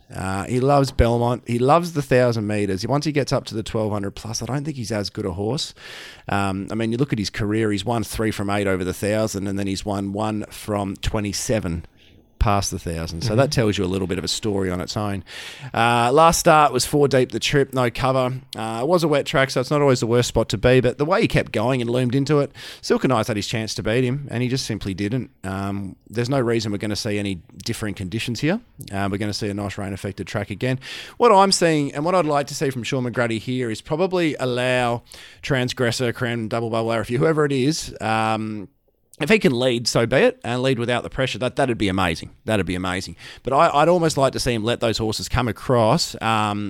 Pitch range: 100-135 Hz